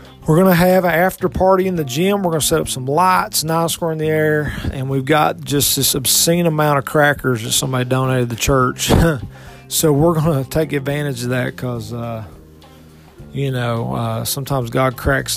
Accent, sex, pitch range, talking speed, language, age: American, male, 120-165 Hz, 205 wpm, English, 40-59